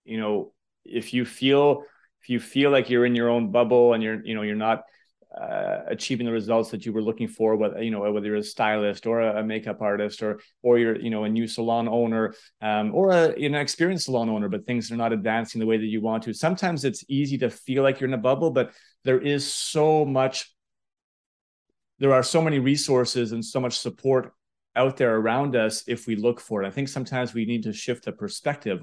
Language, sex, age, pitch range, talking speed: English, male, 30-49, 110-130 Hz, 225 wpm